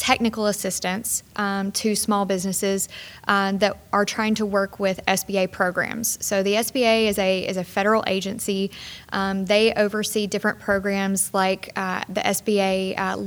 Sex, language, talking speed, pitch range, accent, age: female, English, 155 wpm, 190-210 Hz, American, 20-39